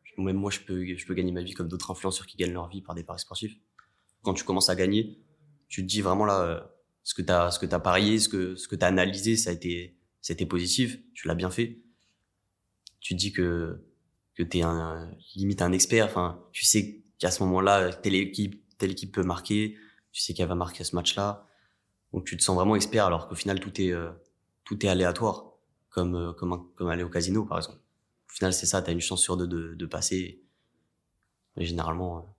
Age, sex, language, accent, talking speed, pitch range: 20-39, male, French, French, 230 wpm, 90-105 Hz